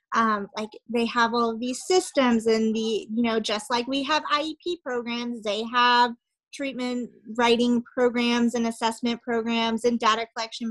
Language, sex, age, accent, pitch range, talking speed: English, female, 30-49, American, 220-250 Hz, 155 wpm